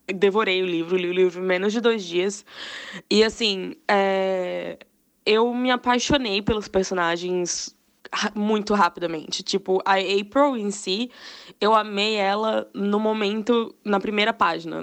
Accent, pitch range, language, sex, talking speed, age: Brazilian, 185-215 Hz, Portuguese, female, 140 wpm, 10-29